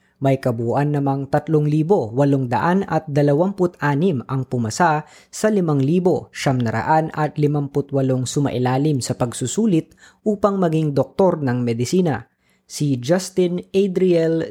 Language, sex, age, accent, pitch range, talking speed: Filipino, female, 20-39, native, 130-175 Hz, 100 wpm